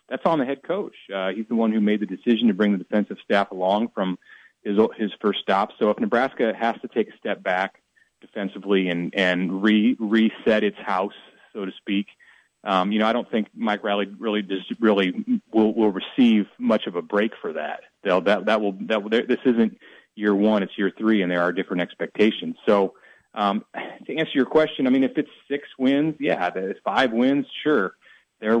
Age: 30-49